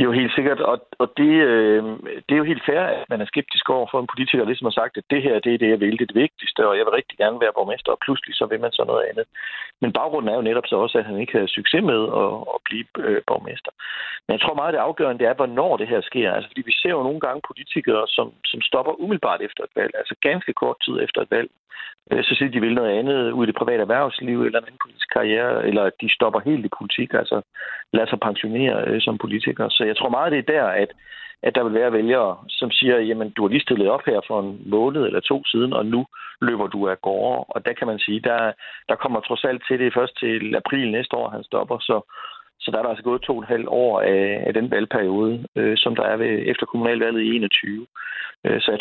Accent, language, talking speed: native, Danish, 260 wpm